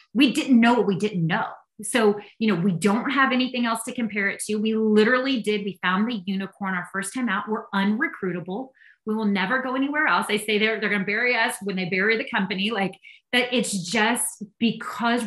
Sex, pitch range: female, 200-260 Hz